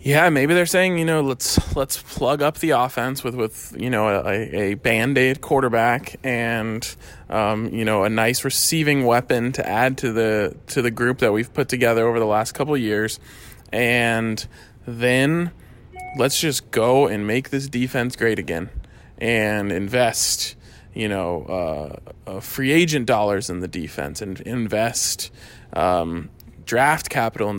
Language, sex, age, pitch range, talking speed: English, male, 20-39, 105-135 Hz, 160 wpm